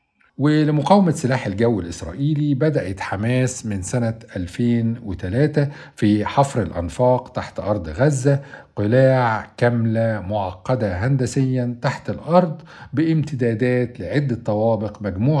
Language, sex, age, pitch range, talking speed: Arabic, male, 50-69, 100-135 Hz, 95 wpm